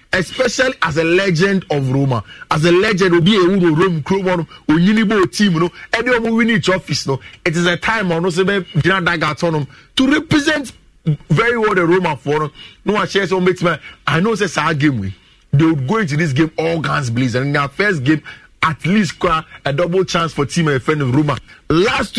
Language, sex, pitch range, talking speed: English, male, 155-205 Hz, 190 wpm